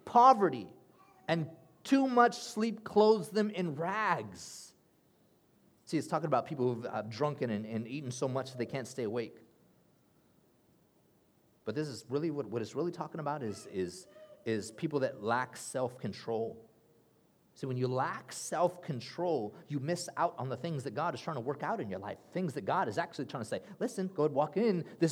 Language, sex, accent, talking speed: English, male, American, 190 wpm